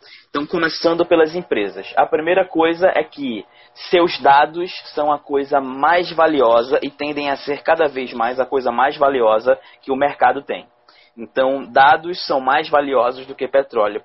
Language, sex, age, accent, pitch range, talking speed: Portuguese, male, 20-39, Brazilian, 135-160 Hz, 165 wpm